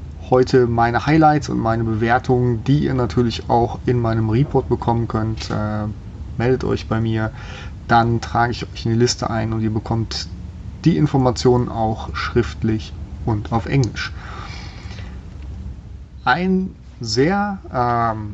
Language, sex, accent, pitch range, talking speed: German, male, German, 100-130 Hz, 135 wpm